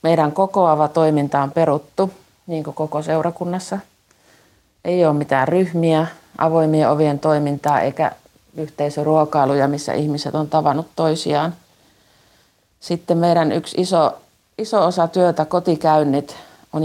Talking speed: 115 wpm